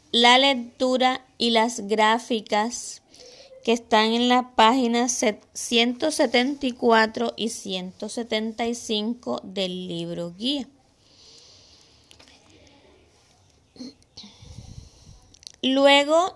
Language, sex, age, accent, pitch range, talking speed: Spanish, female, 20-39, American, 210-245 Hz, 60 wpm